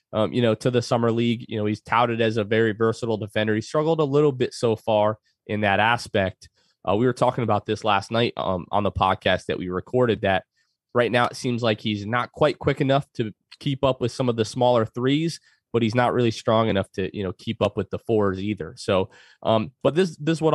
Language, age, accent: English, 20-39, American